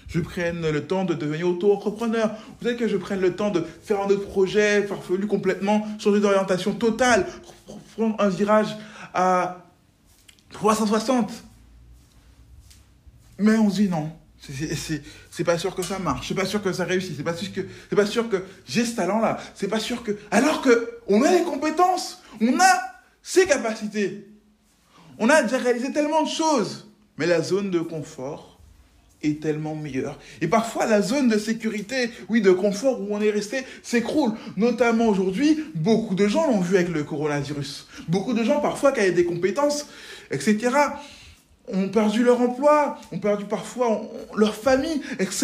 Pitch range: 175-240 Hz